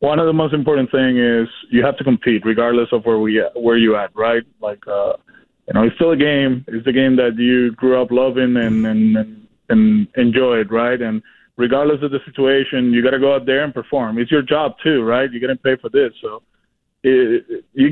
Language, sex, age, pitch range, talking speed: English, male, 20-39, 120-145 Hz, 220 wpm